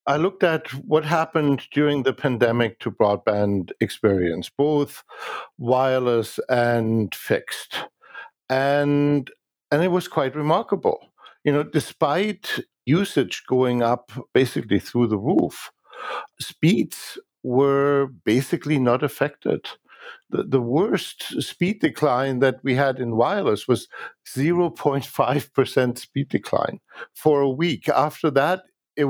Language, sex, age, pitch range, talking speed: English, male, 60-79, 130-155 Hz, 115 wpm